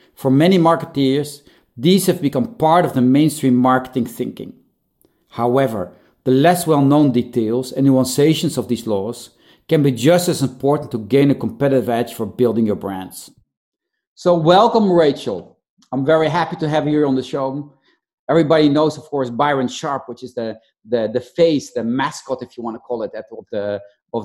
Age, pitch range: 40-59, 125-165 Hz